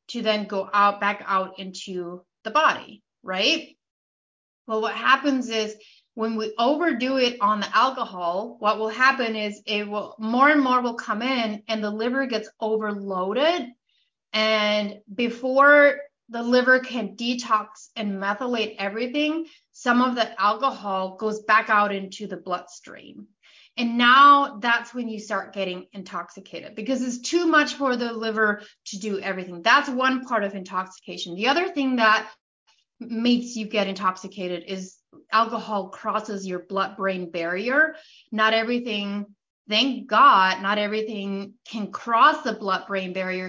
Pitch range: 200-255 Hz